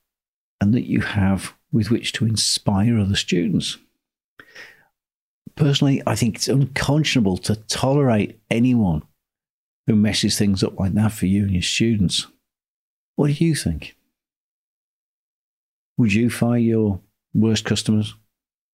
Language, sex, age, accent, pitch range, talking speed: English, male, 50-69, British, 95-115 Hz, 125 wpm